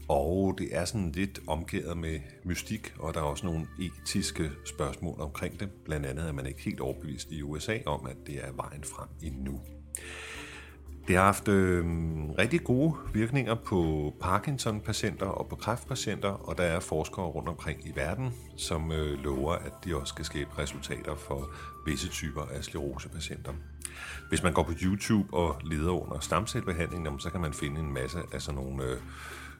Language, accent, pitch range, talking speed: Danish, native, 70-90 Hz, 180 wpm